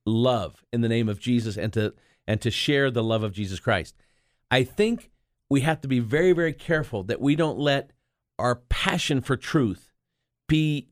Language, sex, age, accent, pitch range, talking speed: English, male, 50-69, American, 120-145 Hz, 185 wpm